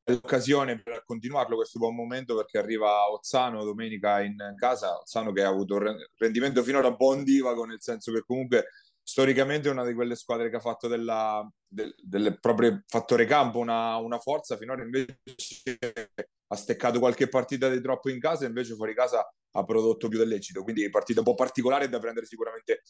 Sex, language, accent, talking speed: male, Italian, native, 190 wpm